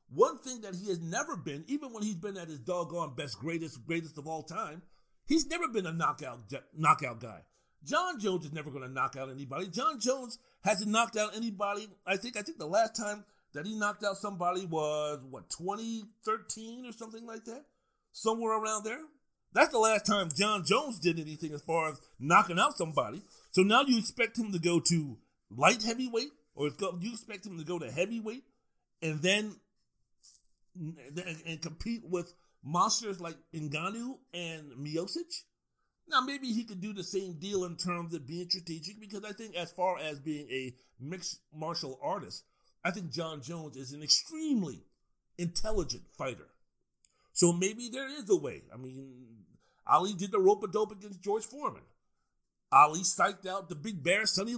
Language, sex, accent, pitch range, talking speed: English, male, American, 160-220 Hz, 175 wpm